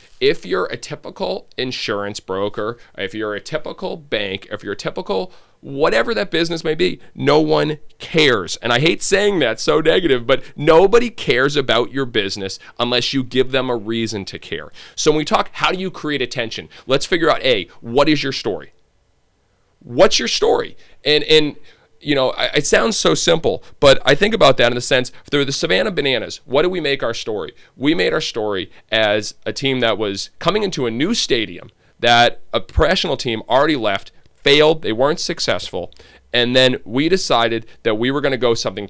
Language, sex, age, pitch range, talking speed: English, male, 40-59, 110-145 Hz, 195 wpm